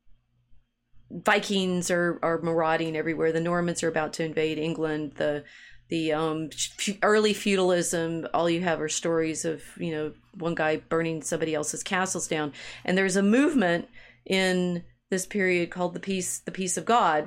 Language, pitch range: English, 165-200 Hz